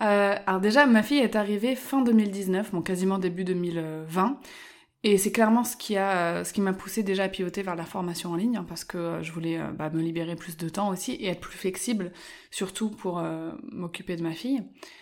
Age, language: 20-39, French